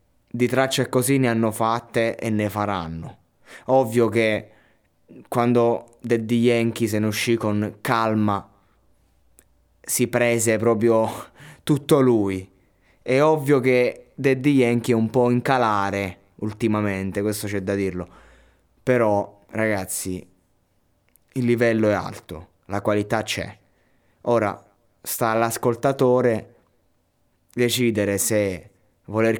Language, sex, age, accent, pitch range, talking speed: Italian, male, 20-39, native, 95-115 Hz, 110 wpm